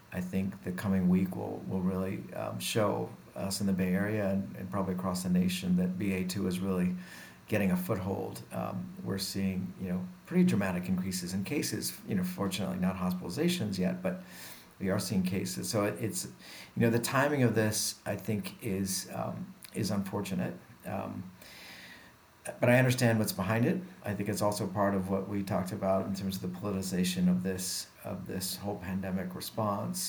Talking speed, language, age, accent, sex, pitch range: 185 wpm, English, 50-69, American, male, 95-110 Hz